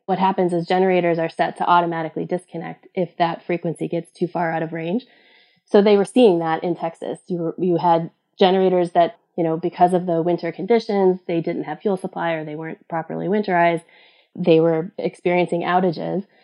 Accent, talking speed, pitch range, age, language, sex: American, 190 wpm, 165-185 Hz, 20-39, English, female